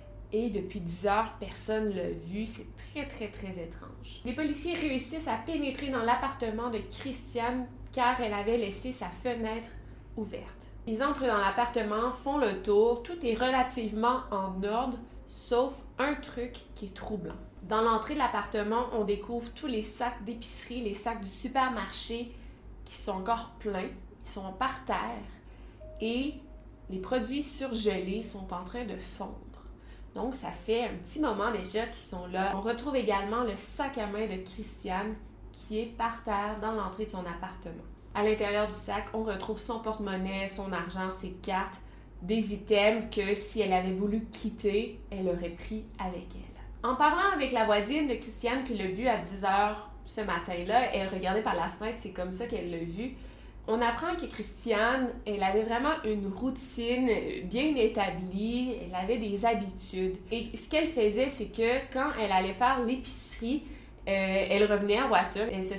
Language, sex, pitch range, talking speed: French, female, 200-245 Hz, 170 wpm